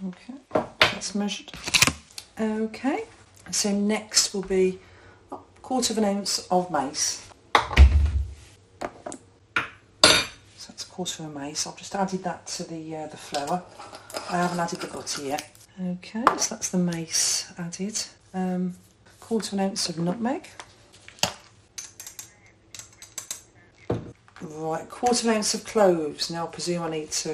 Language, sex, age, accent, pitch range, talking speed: English, female, 50-69, British, 140-195 Hz, 145 wpm